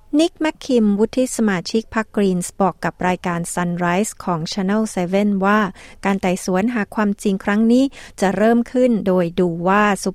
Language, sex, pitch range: Thai, female, 185-220 Hz